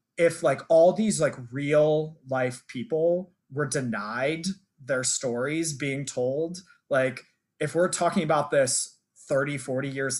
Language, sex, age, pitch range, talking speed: English, male, 20-39, 120-160 Hz, 135 wpm